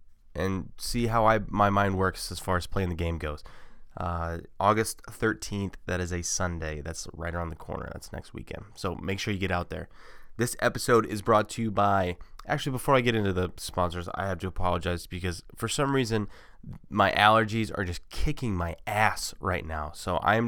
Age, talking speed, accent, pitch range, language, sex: 20-39, 200 wpm, American, 85-105 Hz, English, male